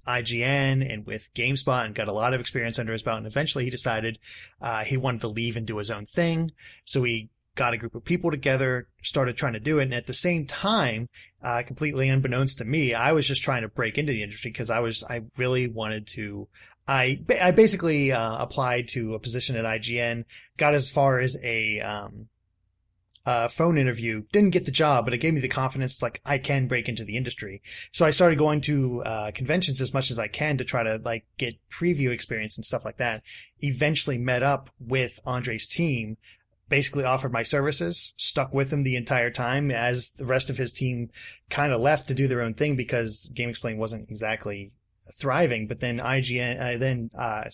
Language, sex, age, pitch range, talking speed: English, male, 30-49, 115-140 Hz, 210 wpm